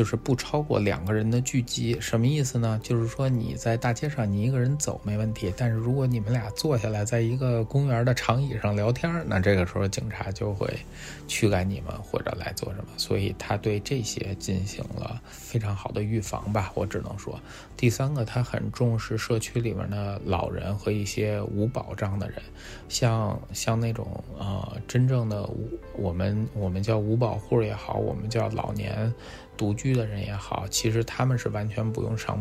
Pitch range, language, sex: 105-120 Hz, Chinese, male